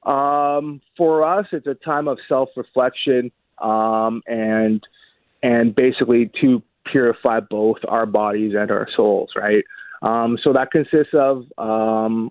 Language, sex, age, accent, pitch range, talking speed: English, male, 30-49, American, 115-140 Hz, 130 wpm